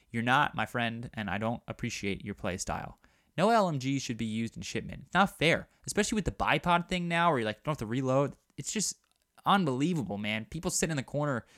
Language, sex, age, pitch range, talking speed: English, male, 20-39, 110-150 Hz, 220 wpm